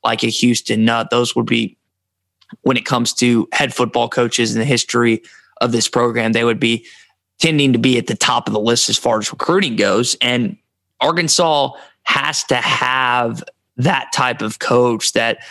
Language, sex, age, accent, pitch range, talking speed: English, male, 20-39, American, 115-130 Hz, 180 wpm